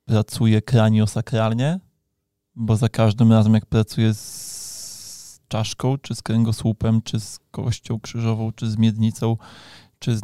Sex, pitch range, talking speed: male, 110-120 Hz, 130 wpm